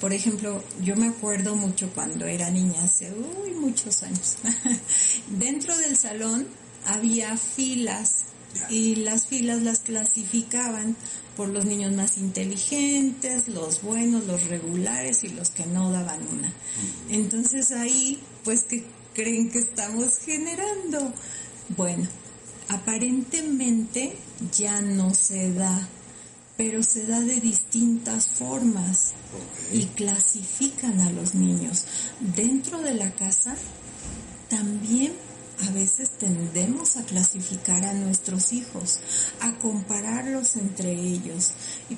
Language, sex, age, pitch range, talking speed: Spanish, female, 40-59, 185-235 Hz, 115 wpm